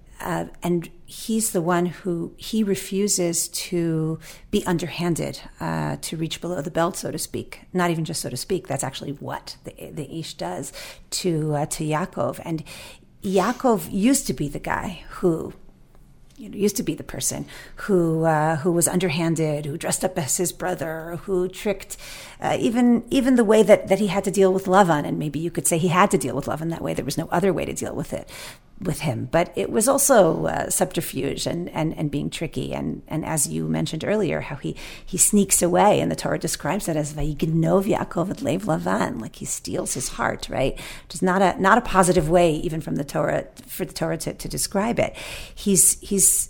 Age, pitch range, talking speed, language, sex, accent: 40-59, 160-195 Hz, 205 wpm, English, female, American